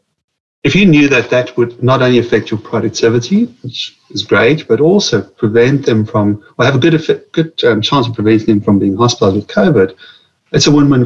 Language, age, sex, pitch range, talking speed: English, 30-49, male, 105-130 Hz, 205 wpm